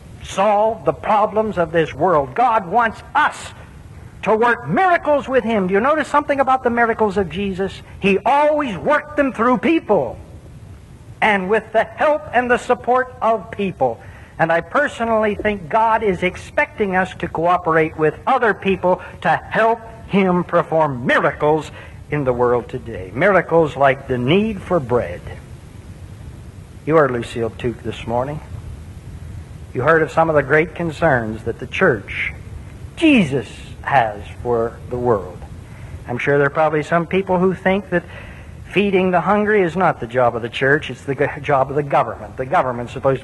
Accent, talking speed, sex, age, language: American, 160 wpm, male, 60-79, English